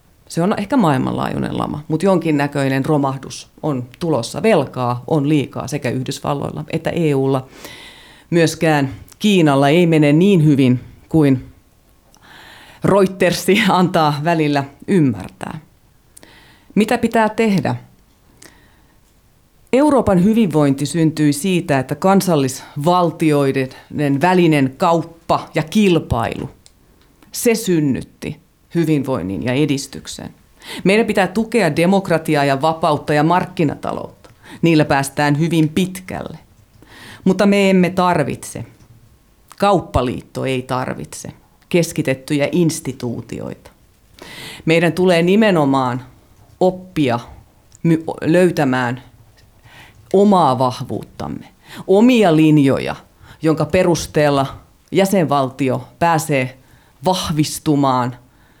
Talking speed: 85 wpm